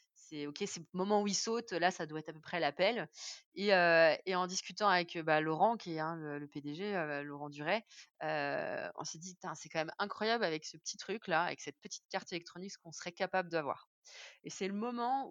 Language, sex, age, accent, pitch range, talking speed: French, female, 20-39, French, 160-195 Hz, 230 wpm